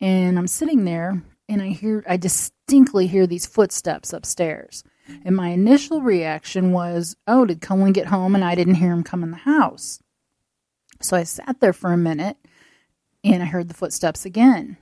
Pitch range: 175-205 Hz